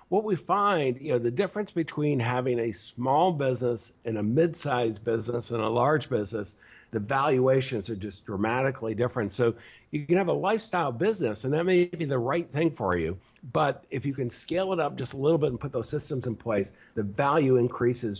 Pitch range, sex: 120-150 Hz, male